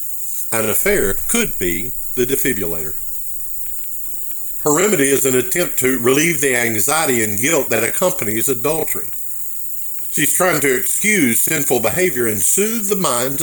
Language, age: English, 50-69